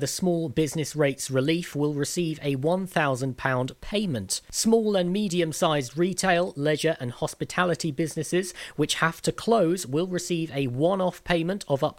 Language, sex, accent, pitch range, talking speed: English, male, British, 135-175 Hz, 145 wpm